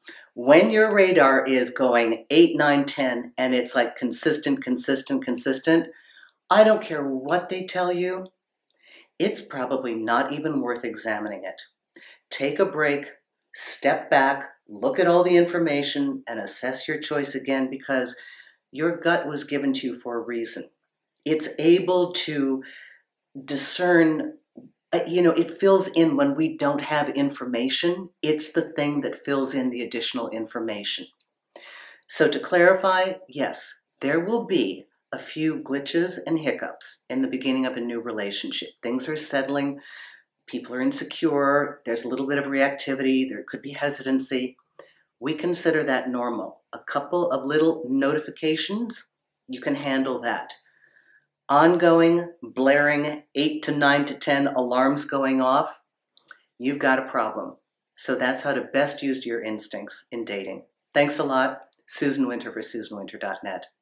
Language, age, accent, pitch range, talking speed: English, 50-69, American, 130-170 Hz, 145 wpm